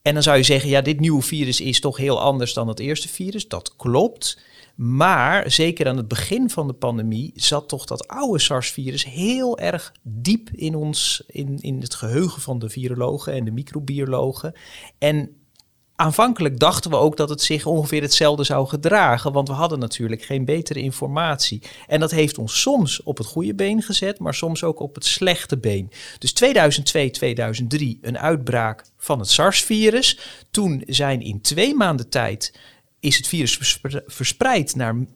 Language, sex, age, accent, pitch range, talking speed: Dutch, male, 40-59, Dutch, 120-160 Hz, 175 wpm